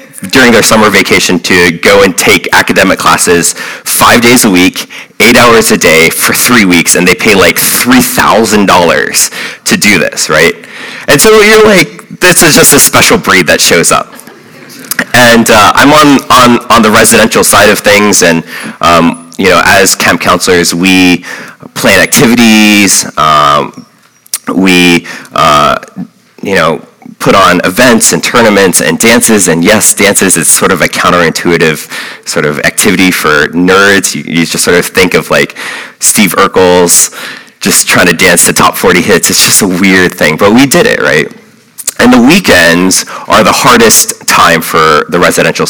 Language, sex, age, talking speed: English, male, 30-49, 165 wpm